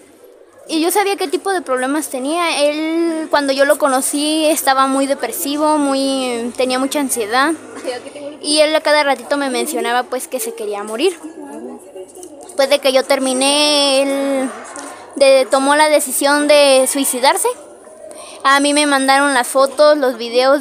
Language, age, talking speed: Spanish, 20-39, 155 wpm